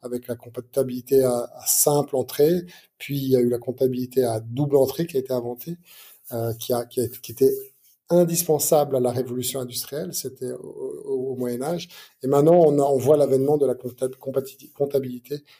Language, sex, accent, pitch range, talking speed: French, male, French, 125-150 Hz, 190 wpm